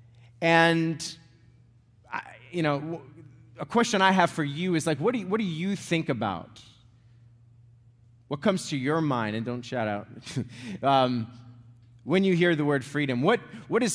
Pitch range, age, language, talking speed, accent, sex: 120-155 Hz, 30-49, English, 165 wpm, American, male